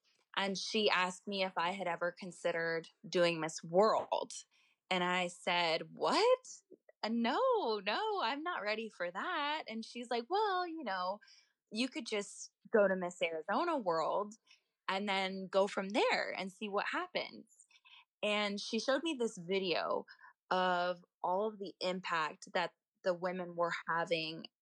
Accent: American